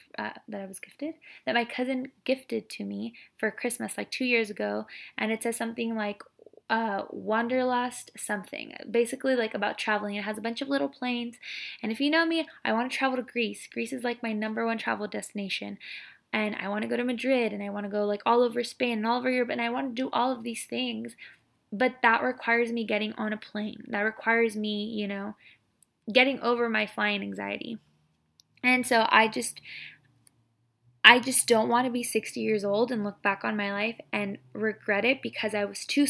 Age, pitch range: 10-29, 205-250 Hz